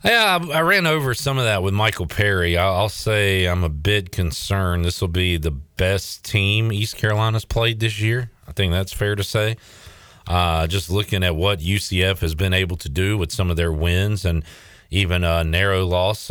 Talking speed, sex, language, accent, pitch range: 200 wpm, male, English, American, 85-110 Hz